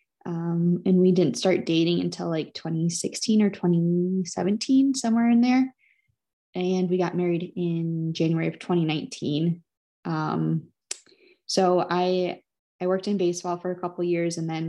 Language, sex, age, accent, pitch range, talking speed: English, female, 20-39, American, 165-185 Hz, 145 wpm